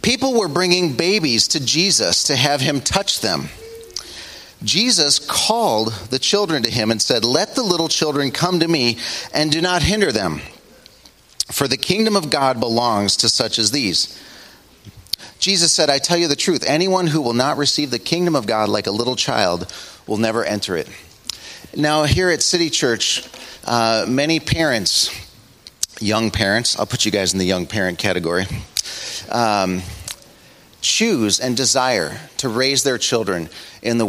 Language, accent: English, American